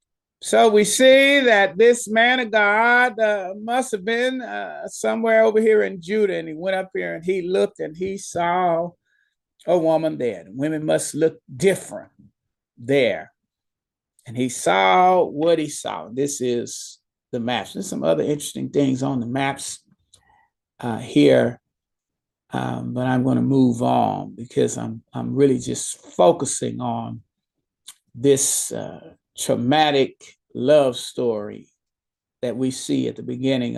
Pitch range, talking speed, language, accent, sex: 130-210 Hz, 140 wpm, English, American, male